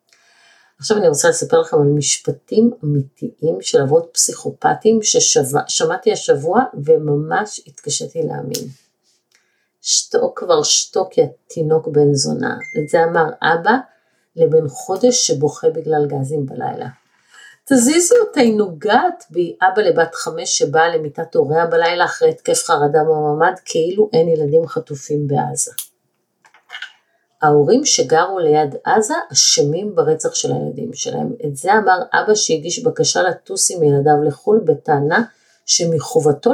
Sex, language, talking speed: female, Hebrew, 120 wpm